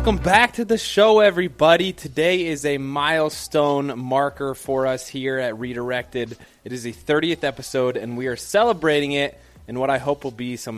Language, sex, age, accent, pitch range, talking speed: English, male, 20-39, American, 110-135 Hz, 185 wpm